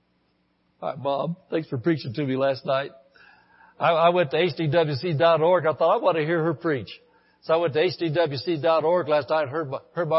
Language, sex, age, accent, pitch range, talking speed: English, male, 60-79, American, 155-185 Hz, 190 wpm